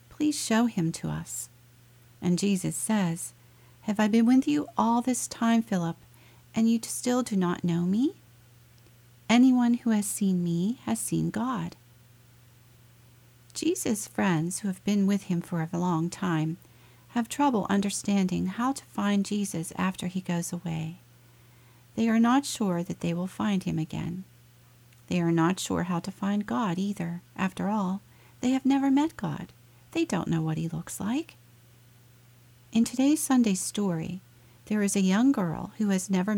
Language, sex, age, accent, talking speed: English, female, 50-69, American, 165 wpm